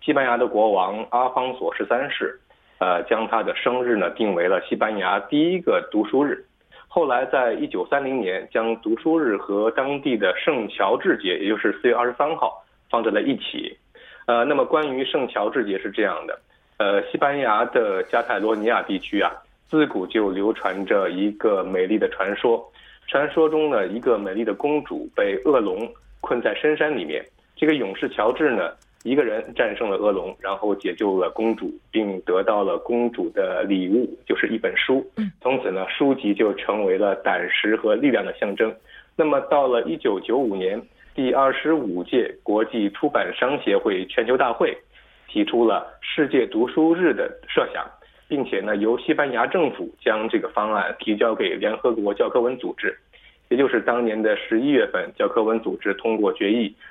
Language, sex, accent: Korean, male, Chinese